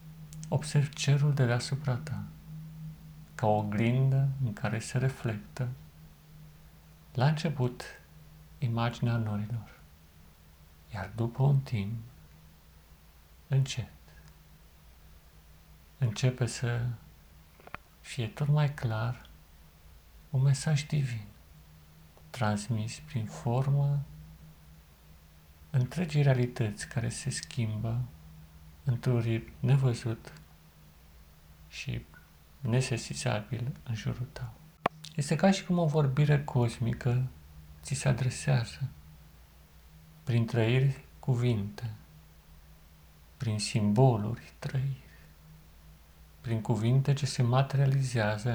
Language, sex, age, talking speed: Romanian, male, 50-69, 80 wpm